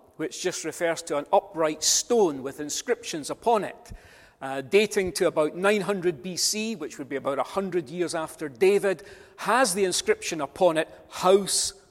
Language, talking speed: English, 155 wpm